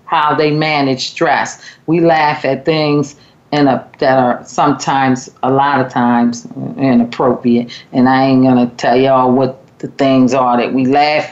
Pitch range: 135-180 Hz